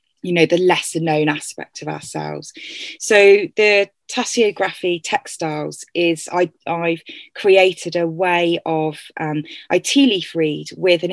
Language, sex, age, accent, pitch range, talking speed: English, female, 20-39, British, 165-215 Hz, 140 wpm